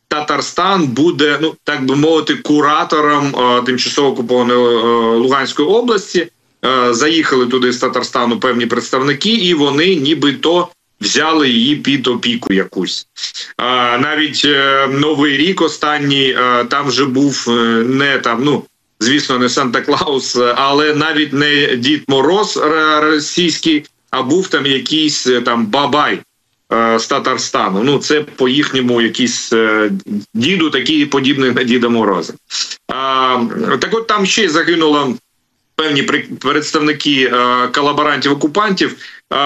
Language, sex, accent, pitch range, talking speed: Ukrainian, male, native, 125-155 Hz, 110 wpm